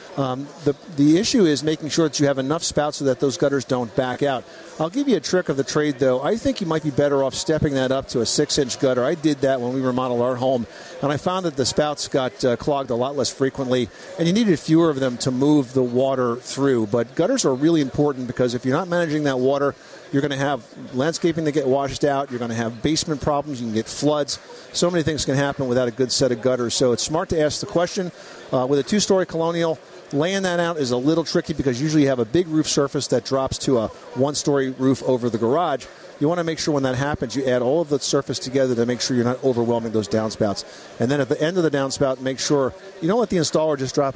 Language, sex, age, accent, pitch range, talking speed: English, male, 50-69, American, 125-155 Hz, 260 wpm